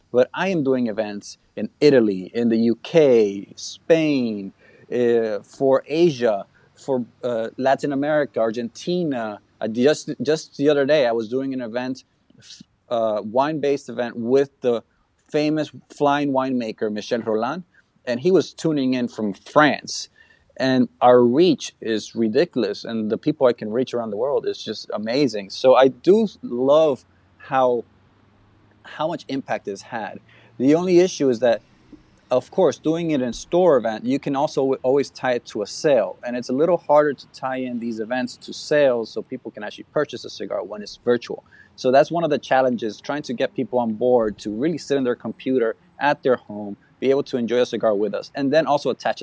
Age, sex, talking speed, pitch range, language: 30-49, male, 185 wpm, 115-140 Hz, English